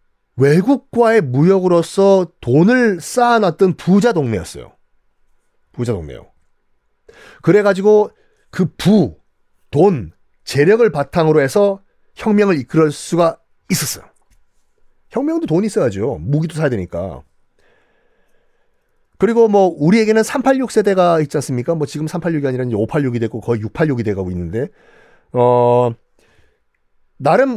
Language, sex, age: Korean, male, 40-59